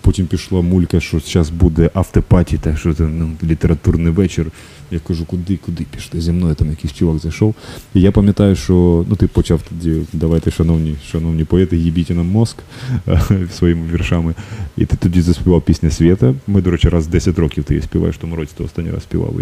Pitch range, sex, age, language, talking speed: 80-95 Hz, male, 20-39, Ukrainian, 200 wpm